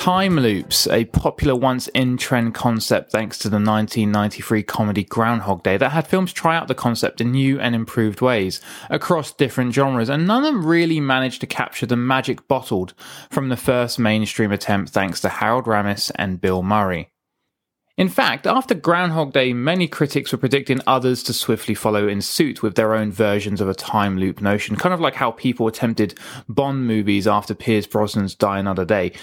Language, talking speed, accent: English, 185 wpm, British